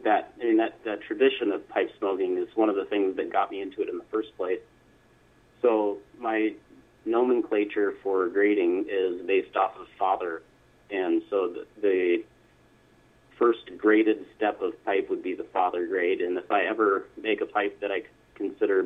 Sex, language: male, English